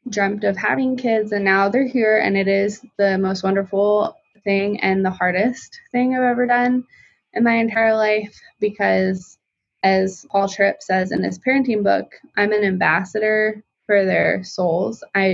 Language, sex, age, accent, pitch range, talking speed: English, female, 20-39, American, 185-220 Hz, 165 wpm